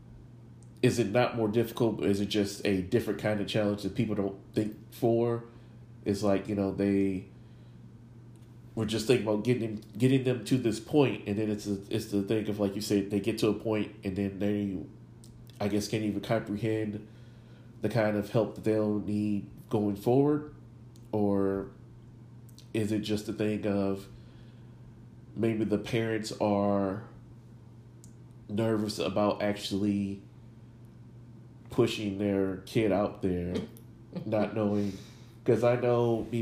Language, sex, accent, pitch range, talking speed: English, male, American, 100-120 Hz, 150 wpm